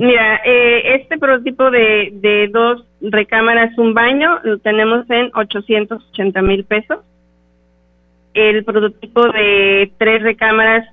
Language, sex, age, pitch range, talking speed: Spanish, female, 30-49, 190-220 Hz, 115 wpm